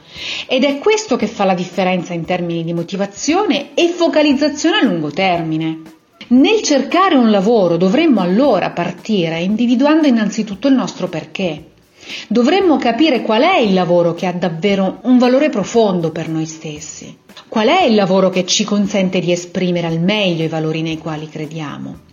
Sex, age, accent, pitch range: female, 40-59, native, 170-255 Hz